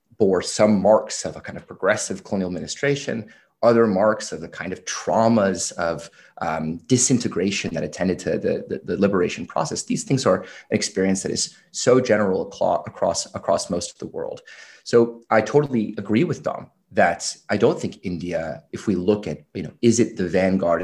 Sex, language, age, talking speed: male, English, 30-49, 185 wpm